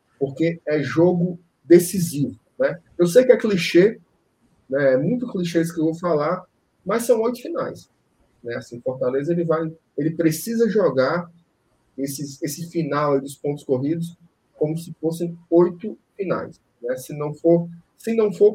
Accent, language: Brazilian, Portuguese